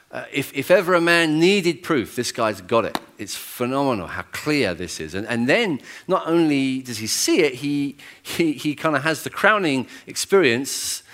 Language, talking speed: English, 195 wpm